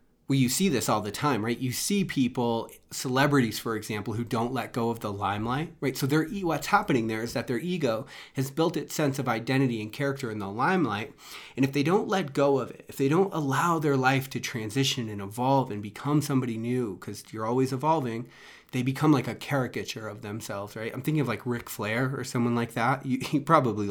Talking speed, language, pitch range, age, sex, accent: 220 wpm, English, 110-140 Hz, 30-49, male, American